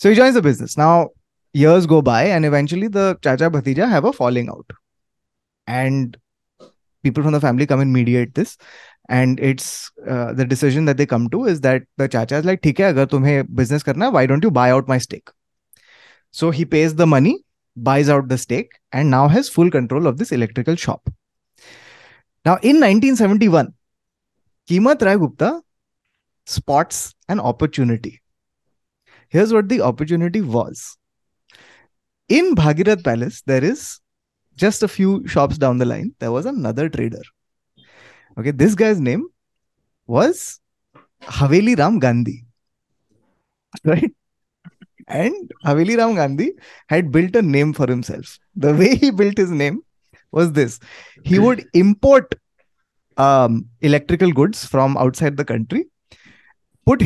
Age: 20-39